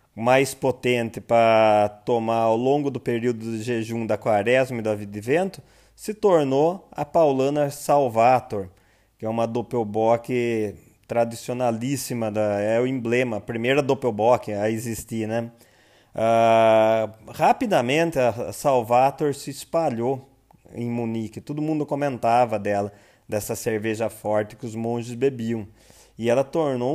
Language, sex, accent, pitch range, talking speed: Portuguese, male, Brazilian, 115-145 Hz, 130 wpm